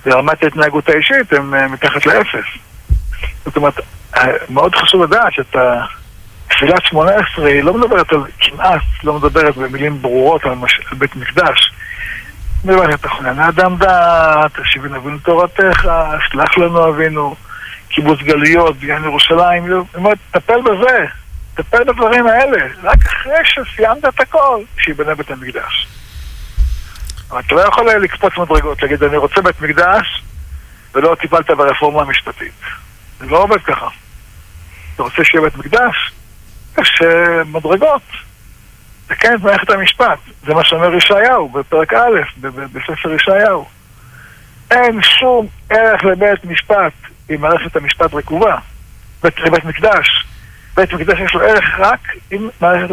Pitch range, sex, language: 135-185 Hz, male, Hebrew